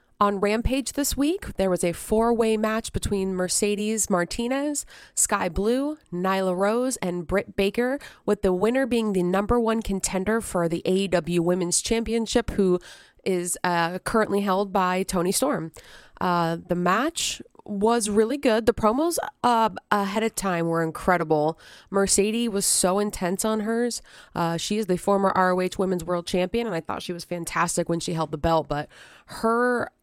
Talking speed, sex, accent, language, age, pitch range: 165 wpm, female, American, English, 30-49, 170-205 Hz